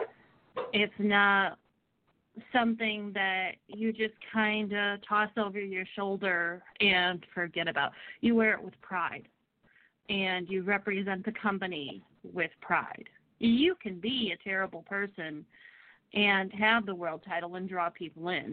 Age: 30-49